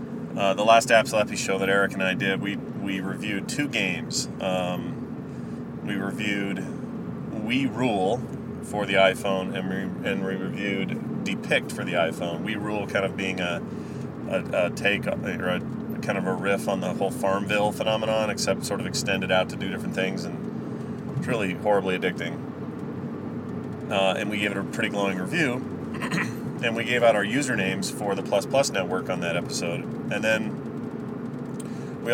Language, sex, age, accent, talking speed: English, male, 30-49, American, 175 wpm